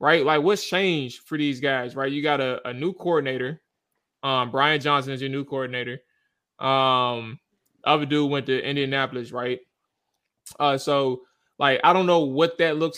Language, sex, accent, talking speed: English, male, American, 170 wpm